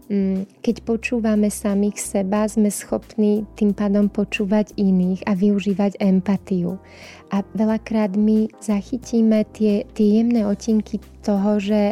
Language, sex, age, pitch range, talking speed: Slovak, female, 20-39, 200-220 Hz, 115 wpm